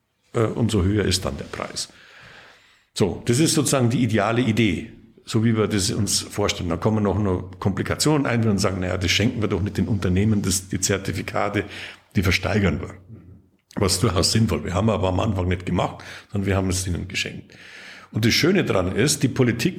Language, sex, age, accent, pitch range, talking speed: German, male, 60-79, German, 100-120 Hz, 195 wpm